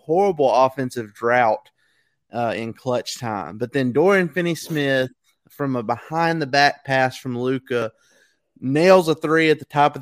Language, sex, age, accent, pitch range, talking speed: English, male, 20-39, American, 125-150 Hz, 160 wpm